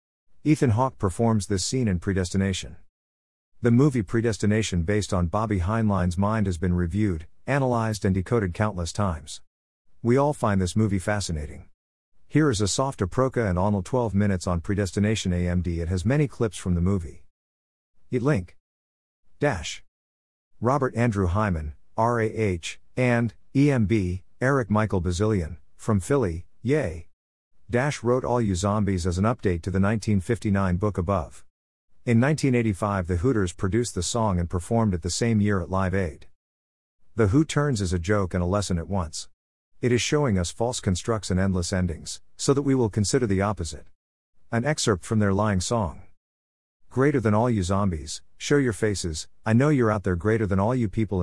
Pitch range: 90-115 Hz